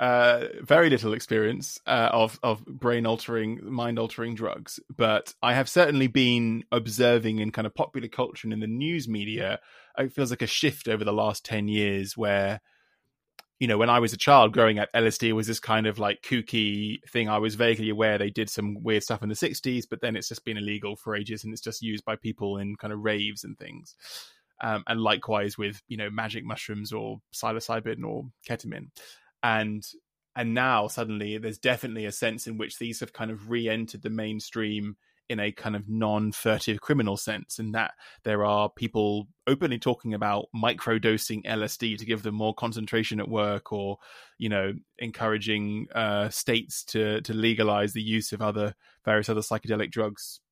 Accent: British